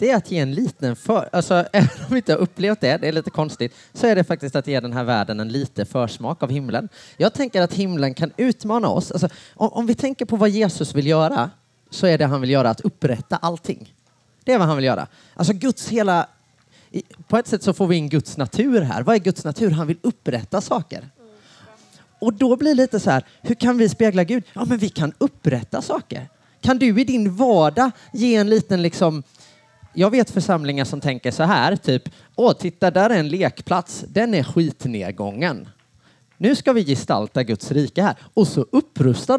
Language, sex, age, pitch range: Swedish, male, 30-49, 140-225 Hz